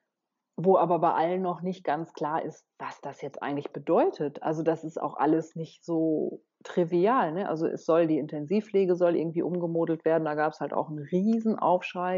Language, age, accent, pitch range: German, 30-49, German, 155-180 Hz